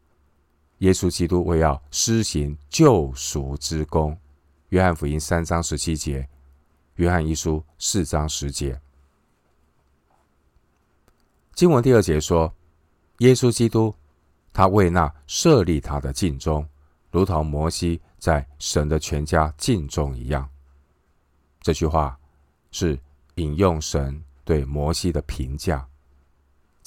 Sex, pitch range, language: male, 70-85 Hz, Chinese